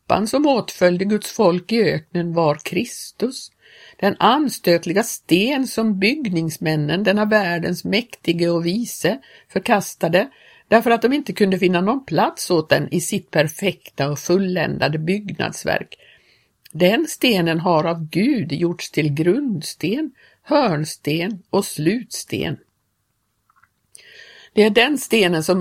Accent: native